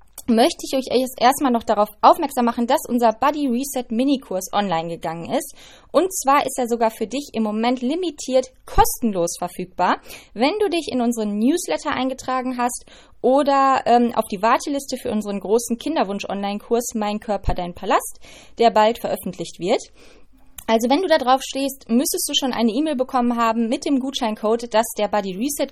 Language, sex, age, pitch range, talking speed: German, female, 20-39, 215-265 Hz, 175 wpm